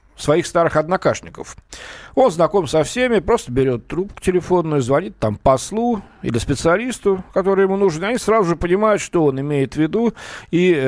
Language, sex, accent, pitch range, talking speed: Russian, male, native, 120-175 Hz, 165 wpm